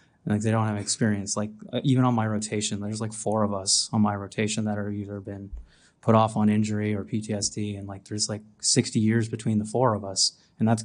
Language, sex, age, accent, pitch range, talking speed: English, male, 30-49, American, 105-125 Hz, 230 wpm